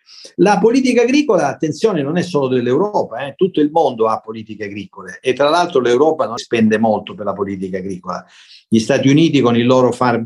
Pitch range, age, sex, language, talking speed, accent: 120-165 Hz, 50-69, male, Italian, 185 wpm, native